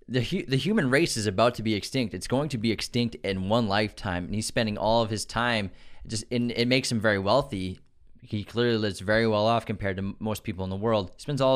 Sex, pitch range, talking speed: male, 105-125 Hz, 255 wpm